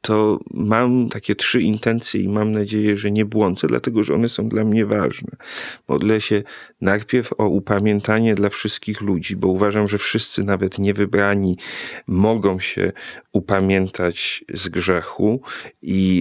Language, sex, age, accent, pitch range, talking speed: Polish, male, 40-59, native, 100-115 Hz, 140 wpm